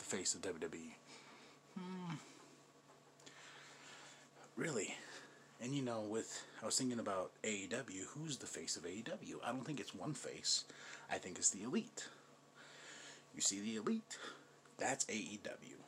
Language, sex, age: English, male, 30-49